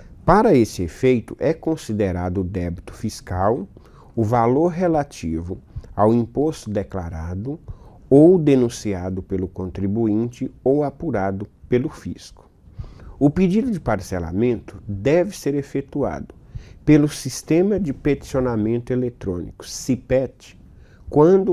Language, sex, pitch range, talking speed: Portuguese, male, 100-130 Hz, 100 wpm